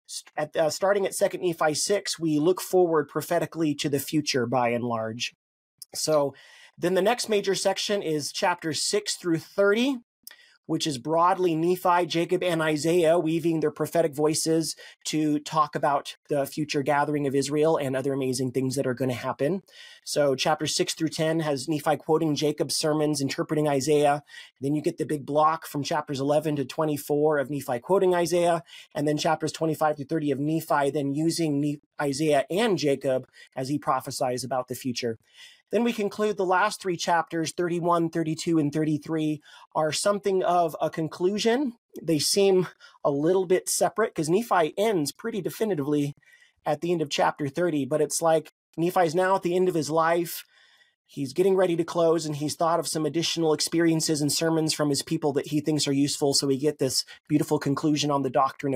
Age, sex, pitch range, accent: 30-49, male, 145-175 Hz, American